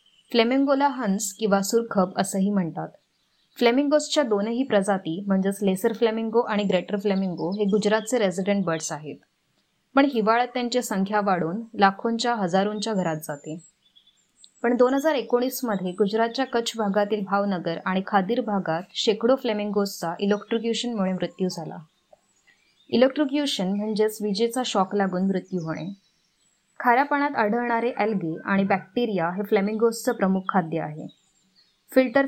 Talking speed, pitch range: 115 wpm, 190-235 Hz